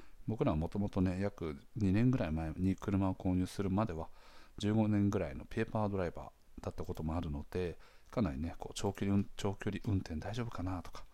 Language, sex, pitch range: Japanese, male, 80-100 Hz